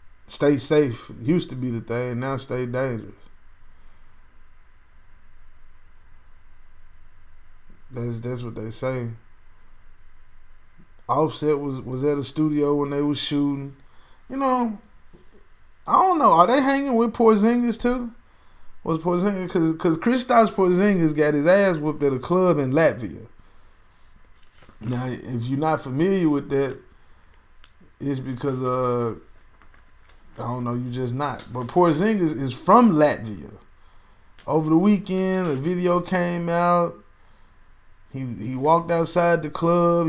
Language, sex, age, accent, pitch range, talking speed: English, male, 20-39, American, 115-170 Hz, 125 wpm